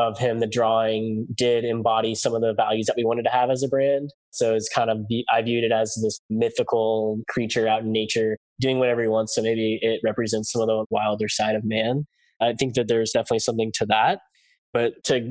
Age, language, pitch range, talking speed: 10-29, English, 110-125 Hz, 225 wpm